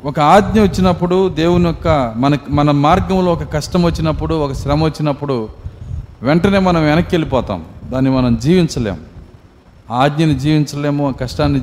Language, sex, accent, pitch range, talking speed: Telugu, male, native, 125-180 Hz, 135 wpm